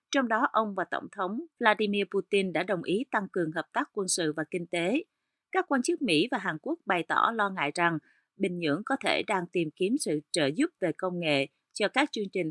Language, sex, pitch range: Vietnamese, female, 175-255 Hz